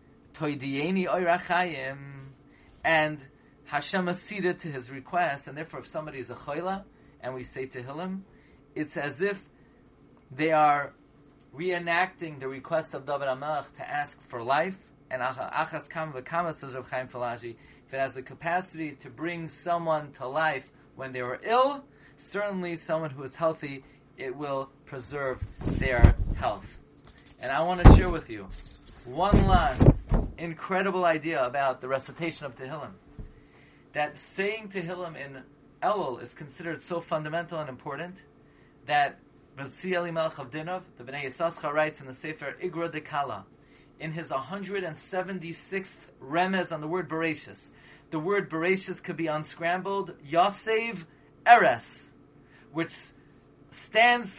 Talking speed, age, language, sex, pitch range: 125 wpm, 30-49, English, male, 140-180 Hz